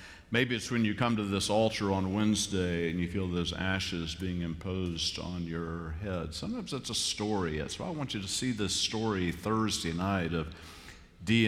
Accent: American